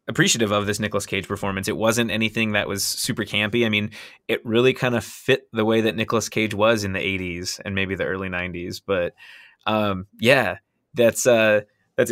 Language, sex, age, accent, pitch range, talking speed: English, male, 20-39, American, 110-165 Hz, 200 wpm